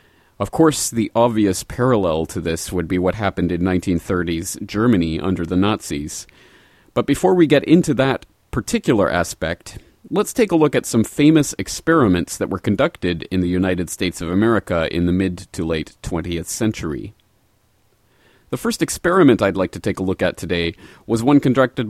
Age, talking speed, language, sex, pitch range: 30-49, 175 wpm, English, male, 90-125 Hz